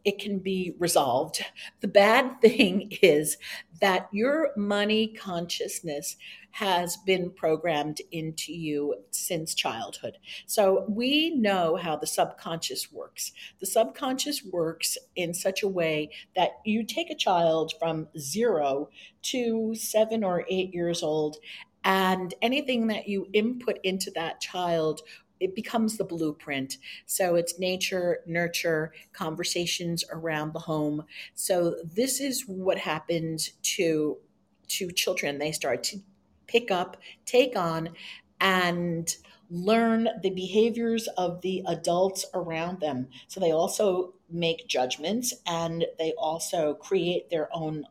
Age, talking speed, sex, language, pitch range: 50-69, 125 wpm, female, English, 165-210 Hz